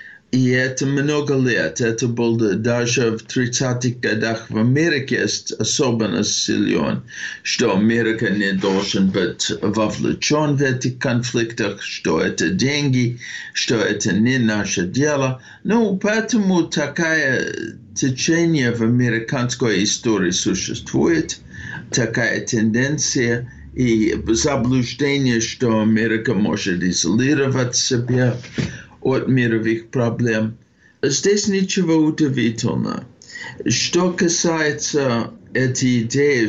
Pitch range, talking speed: 115-150 Hz, 95 wpm